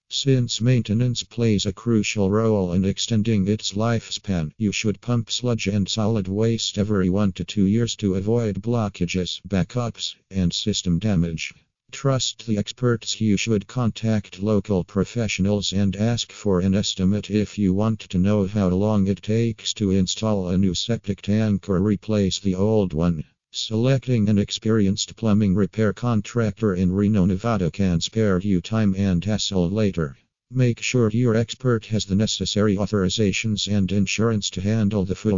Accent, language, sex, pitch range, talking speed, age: American, English, male, 95-110 Hz, 155 wpm, 50-69